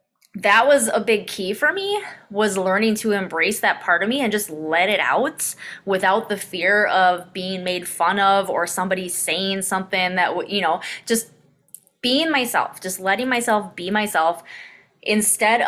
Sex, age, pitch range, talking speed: female, 20-39, 185-225 Hz, 170 wpm